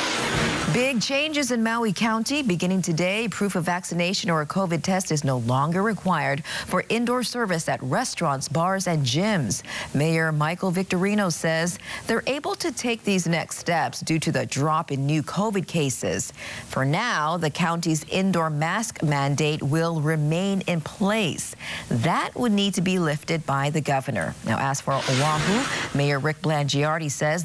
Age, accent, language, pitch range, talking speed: 40-59, American, English, 150-200 Hz, 160 wpm